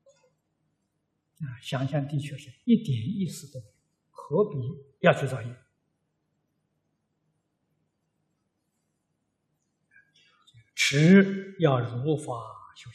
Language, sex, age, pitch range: Chinese, male, 60-79, 135-190 Hz